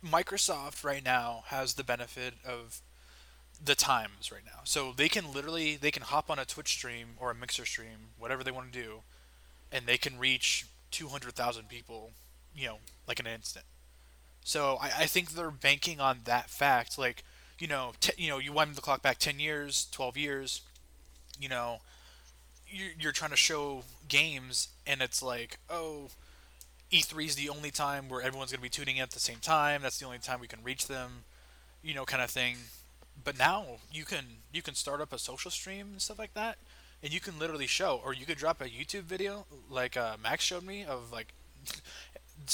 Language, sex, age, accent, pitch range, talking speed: English, male, 20-39, American, 110-150 Hz, 200 wpm